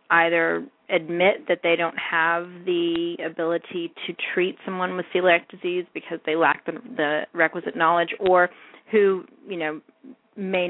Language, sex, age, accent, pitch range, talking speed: English, female, 30-49, American, 160-185 Hz, 145 wpm